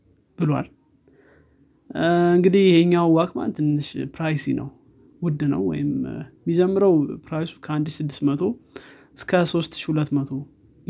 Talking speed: 85 wpm